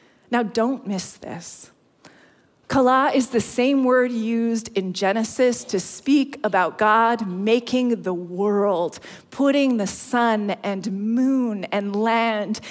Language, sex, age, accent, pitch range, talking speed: English, female, 30-49, American, 205-260 Hz, 125 wpm